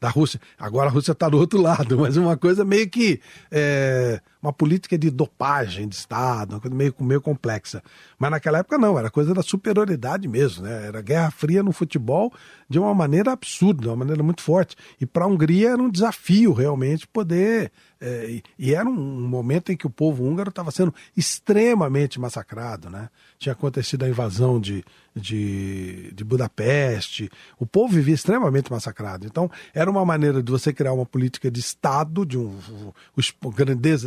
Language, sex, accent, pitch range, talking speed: English, male, Brazilian, 125-180 Hz, 185 wpm